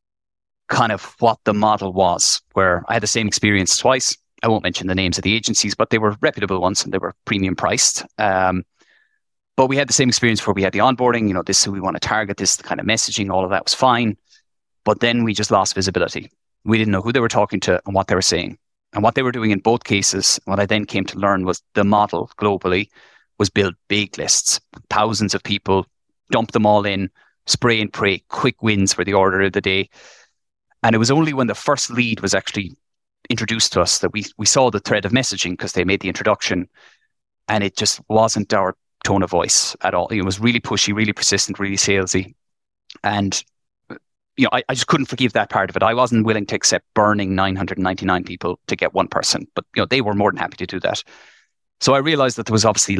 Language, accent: English, Irish